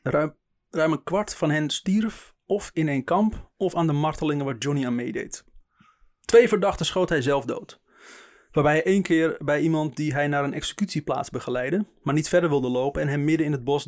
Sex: male